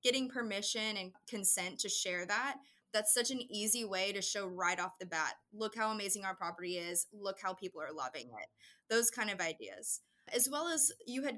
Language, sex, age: English, female, 20-39